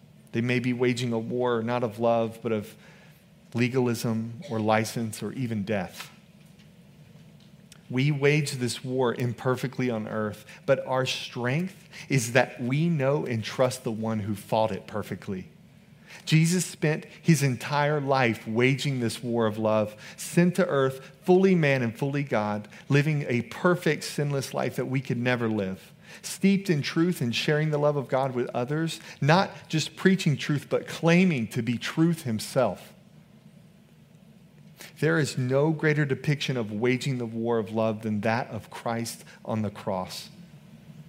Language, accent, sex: English, American, male